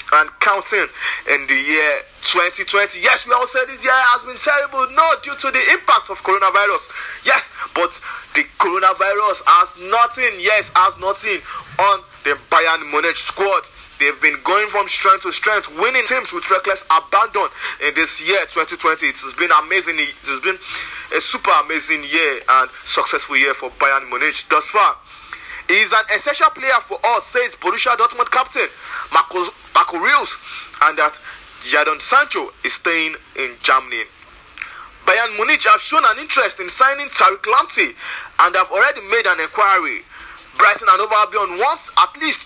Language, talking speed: English, 165 wpm